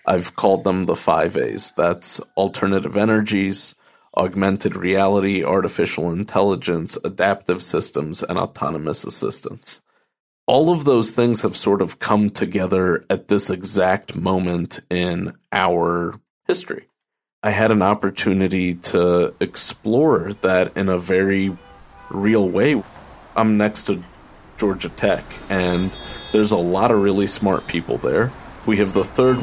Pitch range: 95-105 Hz